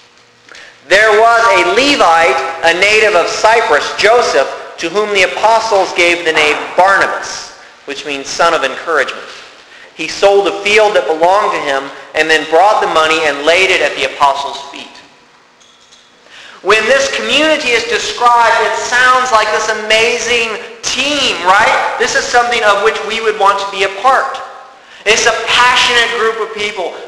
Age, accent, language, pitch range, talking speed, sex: 40-59, American, English, 170-230 Hz, 160 wpm, male